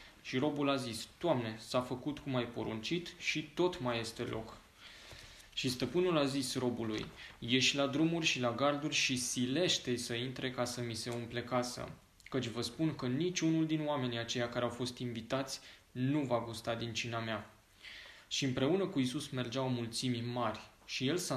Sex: male